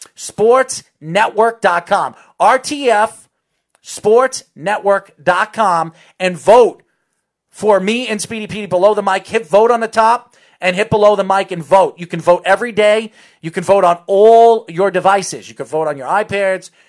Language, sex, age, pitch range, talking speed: English, male, 40-59, 170-220 Hz, 155 wpm